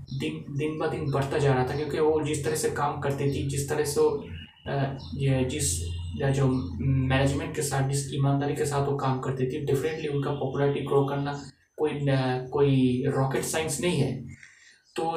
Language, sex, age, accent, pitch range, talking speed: Hindi, male, 20-39, native, 130-150 Hz, 180 wpm